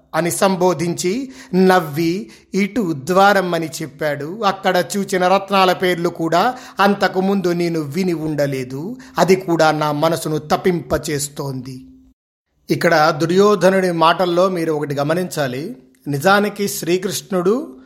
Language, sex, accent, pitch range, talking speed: Telugu, male, native, 160-215 Hz, 100 wpm